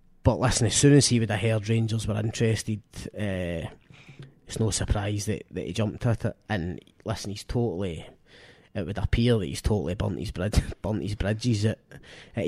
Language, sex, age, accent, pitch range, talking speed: English, male, 20-39, British, 105-120 Hz, 190 wpm